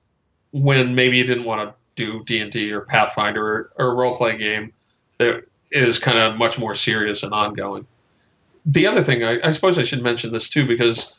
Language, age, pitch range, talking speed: English, 40-59, 110-125 Hz, 195 wpm